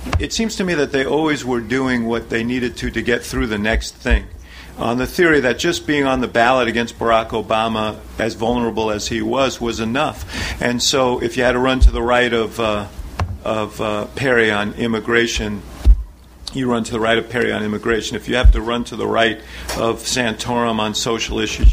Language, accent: English, American